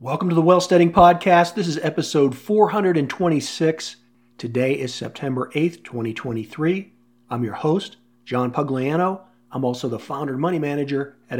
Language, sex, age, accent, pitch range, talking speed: English, male, 40-59, American, 125-155 Hz, 140 wpm